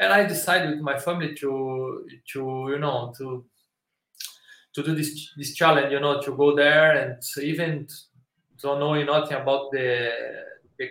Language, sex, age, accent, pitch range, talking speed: English, male, 20-39, Brazilian, 135-165 Hz, 160 wpm